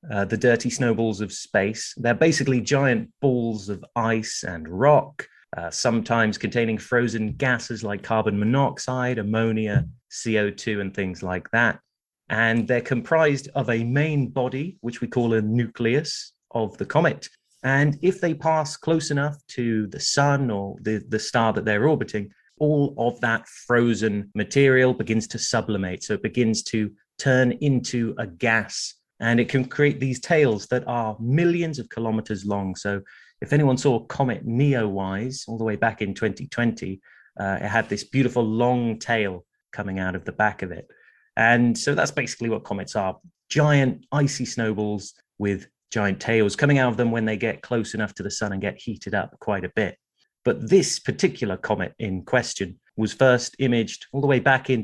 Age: 30-49